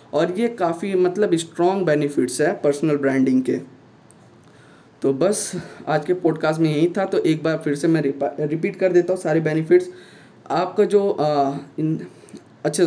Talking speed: 155 wpm